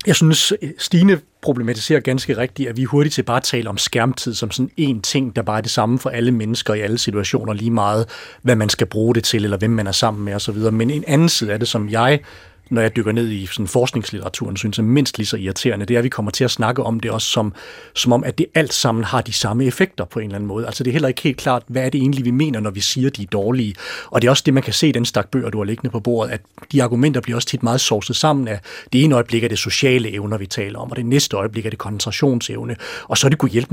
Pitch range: 115-140 Hz